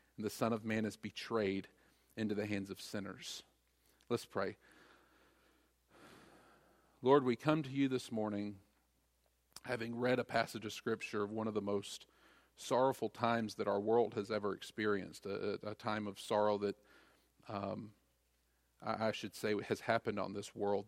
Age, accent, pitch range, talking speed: 40-59, American, 100-115 Hz, 160 wpm